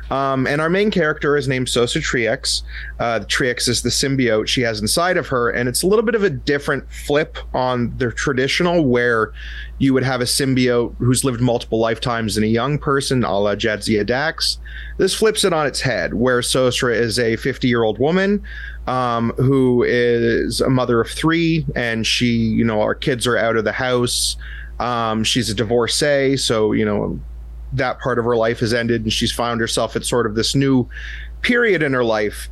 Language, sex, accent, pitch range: English, male, American, 115-140 Hz